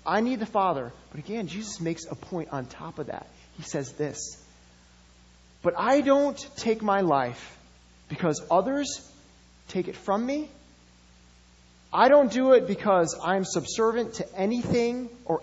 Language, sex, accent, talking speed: English, male, American, 150 wpm